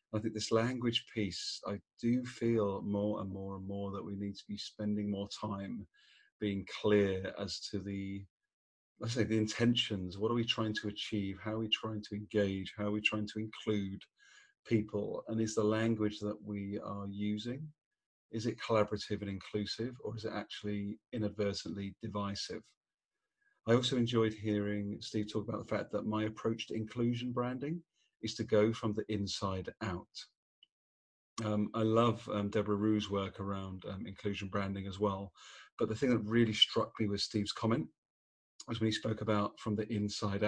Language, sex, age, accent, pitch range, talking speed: English, male, 40-59, British, 100-110 Hz, 180 wpm